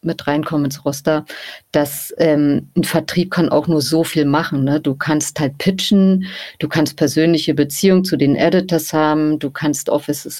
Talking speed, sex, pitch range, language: 175 wpm, female, 145-165 Hz, German